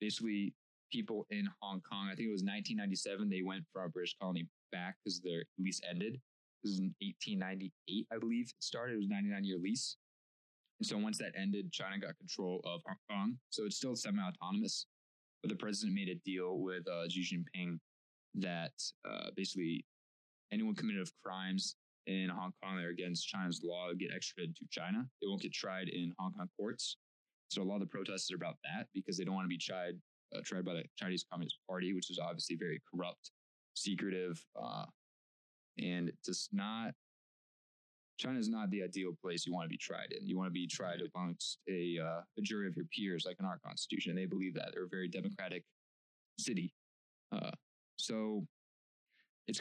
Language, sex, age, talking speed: English, male, 20-39, 190 wpm